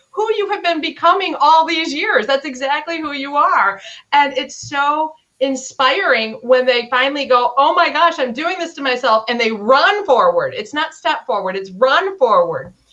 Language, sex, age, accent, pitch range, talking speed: English, female, 30-49, American, 210-300 Hz, 185 wpm